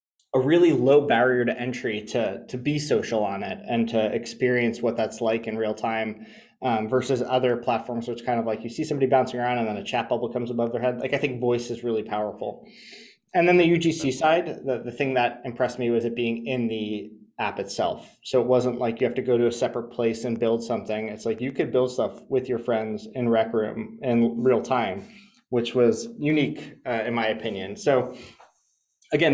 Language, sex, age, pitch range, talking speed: English, male, 20-39, 115-135 Hz, 215 wpm